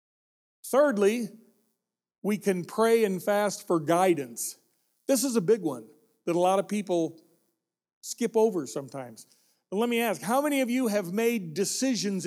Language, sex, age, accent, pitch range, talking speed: English, male, 40-59, American, 170-230 Hz, 150 wpm